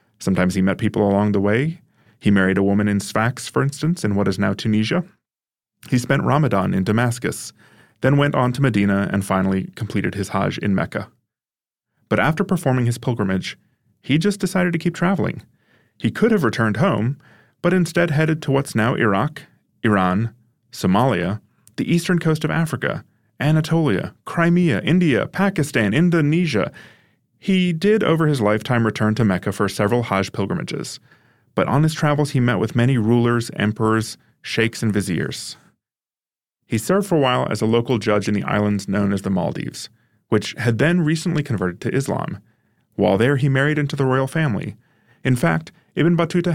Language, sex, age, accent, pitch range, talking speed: English, male, 30-49, American, 105-155 Hz, 170 wpm